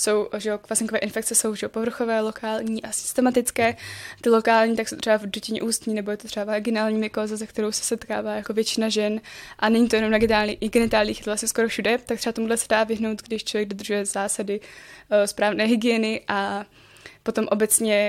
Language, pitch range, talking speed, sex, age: Czech, 210-230 Hz, 190 wpm, female, 10-29